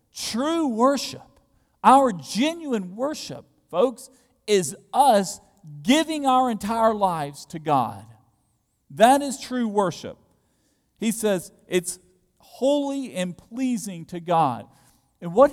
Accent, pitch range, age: American, 150-235 Hz, 40-59